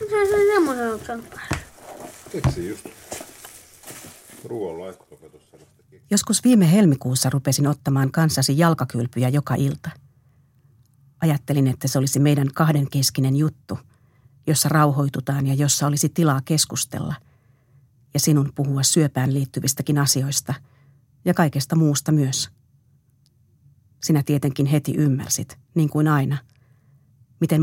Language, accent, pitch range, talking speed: Finnish, native, 130-150 Hz, 90 wpm